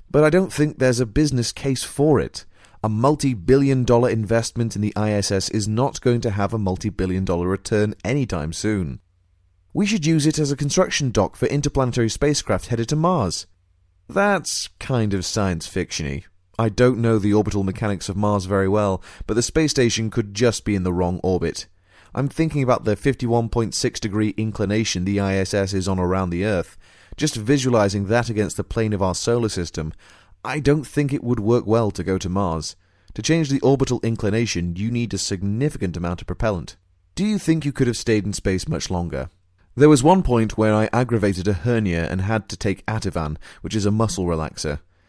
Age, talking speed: 30-49, 195 wpm